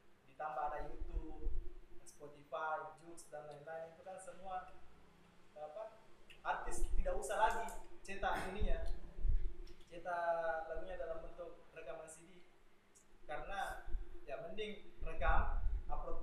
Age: 20-39